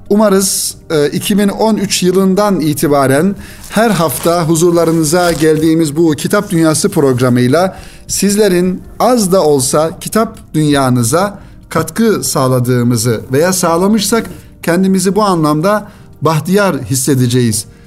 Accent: native